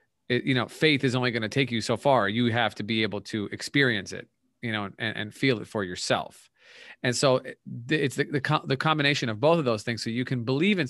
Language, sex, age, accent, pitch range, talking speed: English, male, 30-49, American, 115-140 Hz, 240 wpm